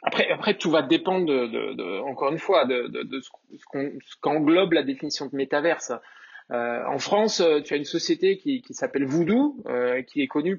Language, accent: French, French